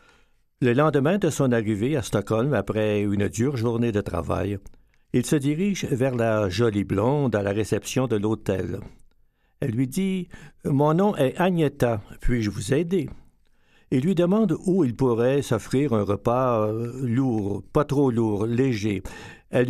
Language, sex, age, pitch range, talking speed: French, male, 60-79, 105-140 Hz, 160 wpm